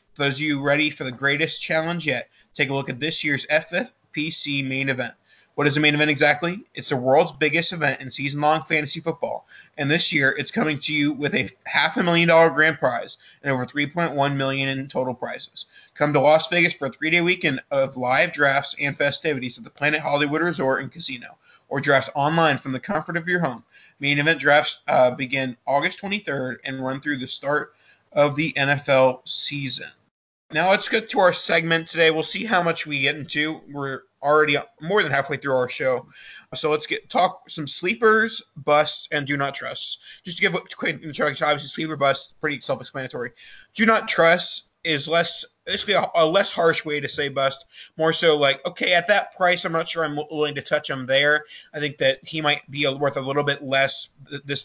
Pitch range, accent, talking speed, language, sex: 140-165 Hz, American, 200 wpm, English, male